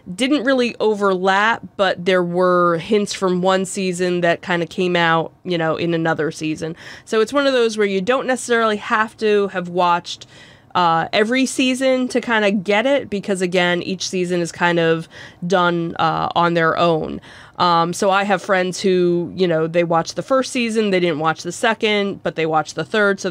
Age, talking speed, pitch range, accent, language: 20-39, 200 wpm, 170-200 Hz, American, English